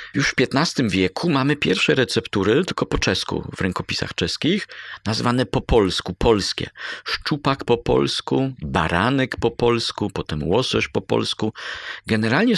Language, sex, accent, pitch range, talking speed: Polish, male, native, 95-115 Hz, 135 wpm